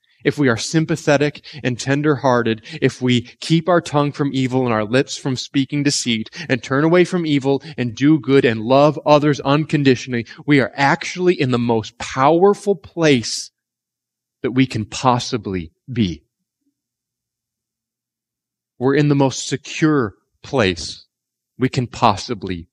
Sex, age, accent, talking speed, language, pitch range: male, 30-49, American, 140 wpm, English, 115-160 Hz